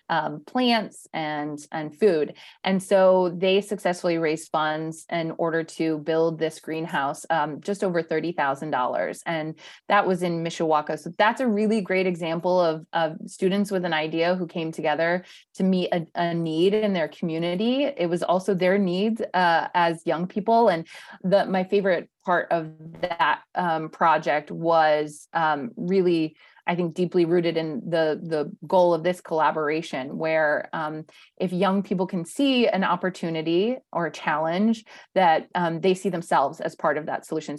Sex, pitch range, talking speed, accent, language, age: female, 160-200 Hz, 170 wpm, American, English, 20-39